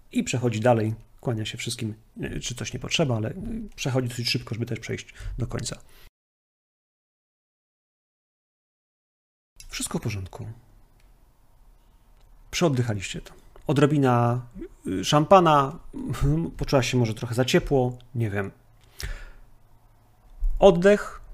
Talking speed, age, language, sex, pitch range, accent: 100 wpm, 40-59, Polish, male, 115-140 Hz, native